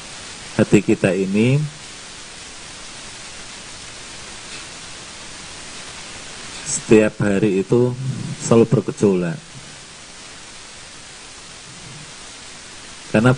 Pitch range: 100-150 Hz